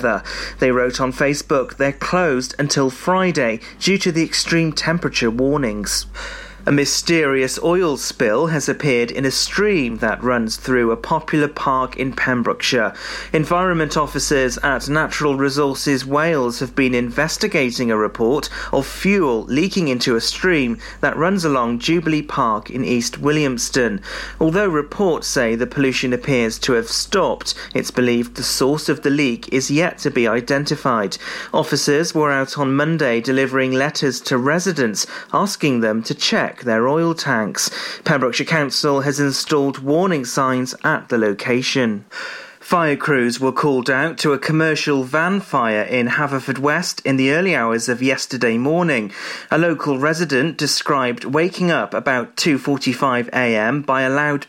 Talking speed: 145 wpm